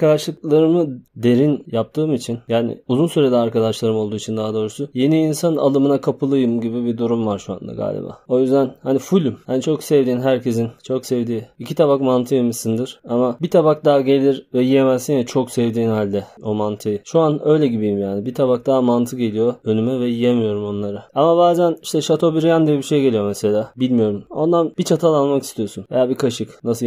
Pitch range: 110-140 Hz